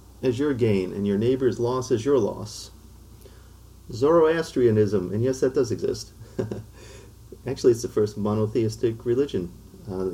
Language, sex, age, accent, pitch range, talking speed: English, male, 40-59, American, 100-120 Hz, 135 wpm